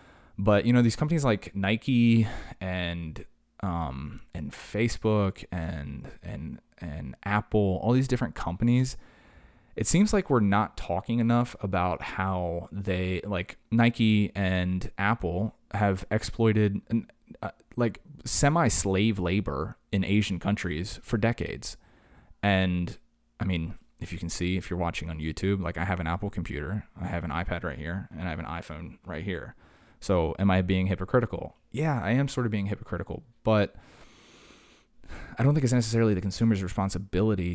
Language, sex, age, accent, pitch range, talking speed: English, male, 20-39, American, 90-110 Hz, 155 wpm